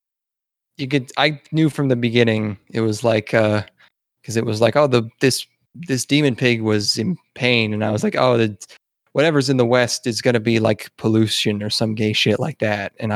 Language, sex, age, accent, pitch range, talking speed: English, male, 20-39, American, 105-125 Hz, 210 wpm